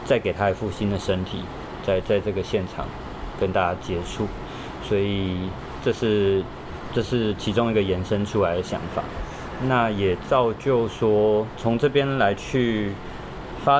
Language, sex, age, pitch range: Chinese, male, 20-39, 95-115 Hz